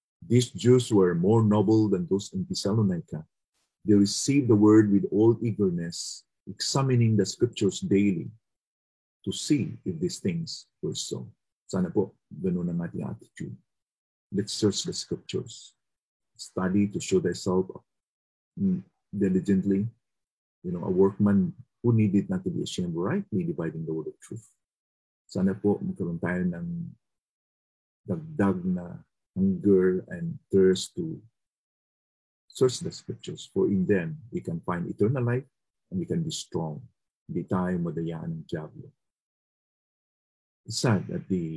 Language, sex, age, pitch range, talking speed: English, male, 40-59, 90-145 Hz, 125 wpm